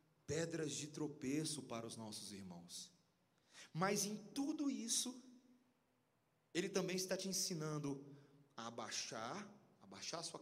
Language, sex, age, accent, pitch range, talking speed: Portuguese, male, 40-59, Brazilian, 125-155 Hz, 120 wpm